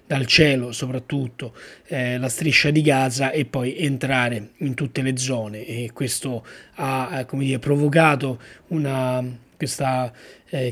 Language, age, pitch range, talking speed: Italian, 30-49, 125-150 Hz, 140 wpm